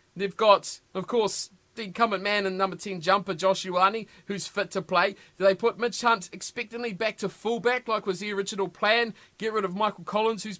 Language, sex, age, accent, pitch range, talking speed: English, male, 30-49, Australian, 185-225 Hz, 205 wpm